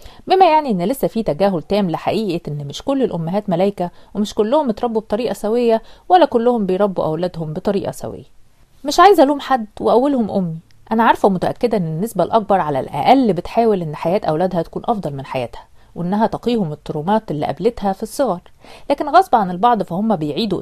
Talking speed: 170 wpm